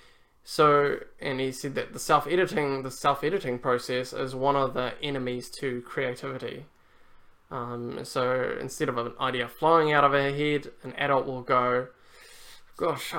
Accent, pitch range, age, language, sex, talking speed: Australian, 125-145 Hz, 10-29, English, male, 150 wpm